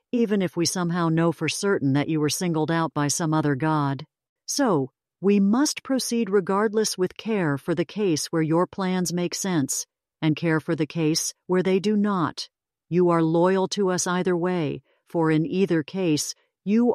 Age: 50-69